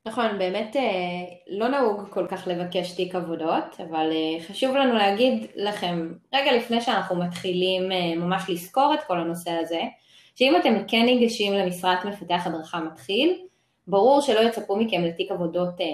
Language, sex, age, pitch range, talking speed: Hebrew, female, 20-39, 180-230 Hz, 145 wpm